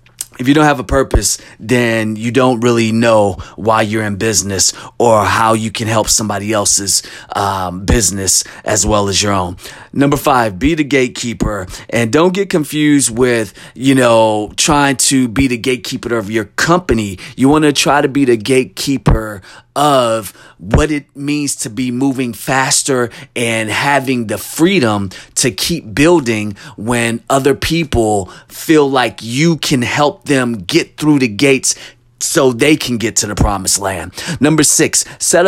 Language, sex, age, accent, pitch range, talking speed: English, male, 30-49, American, 110-145 Hz, 160 wpm